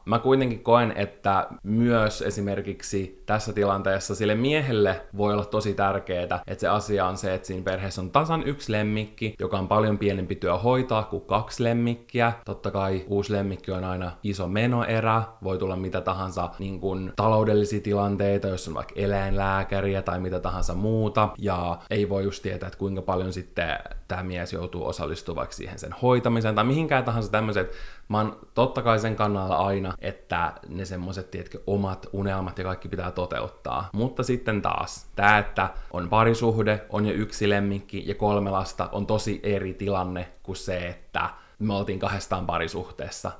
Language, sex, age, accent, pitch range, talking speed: Finnish, male, 20-39, native, 95-110 Hz, 165 wpm